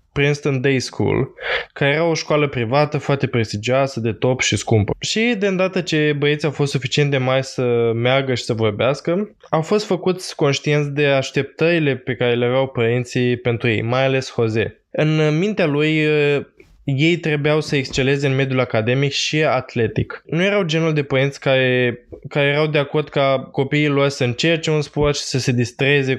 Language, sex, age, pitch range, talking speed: Romanian, male, 20-39, 125-150 Hz, 180 wpm